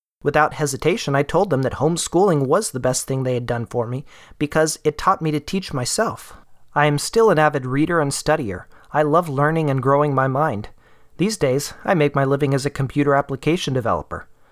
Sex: male